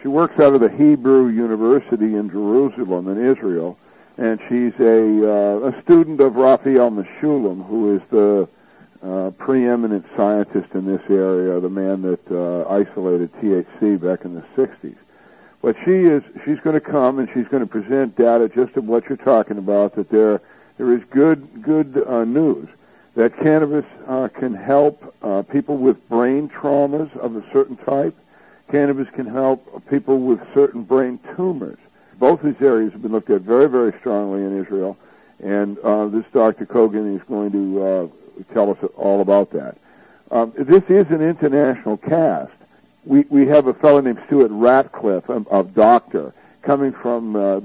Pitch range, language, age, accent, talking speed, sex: 100-140 Hz, English, 60-79, American, 170 wpm, male